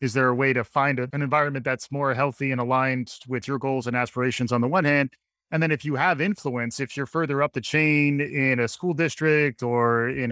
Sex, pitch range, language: male, 125-150 Hz, English